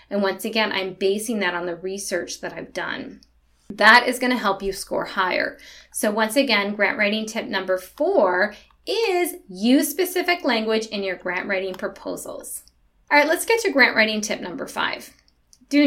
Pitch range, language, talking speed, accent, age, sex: 200-280 Hz, English, 180 wpm, American, 20-39, female